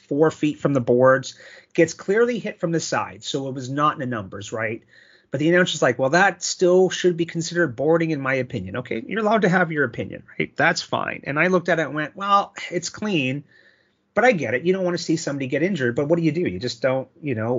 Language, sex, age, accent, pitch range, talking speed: English, male, 30-49, American, 125-165 Hz, 255 wpm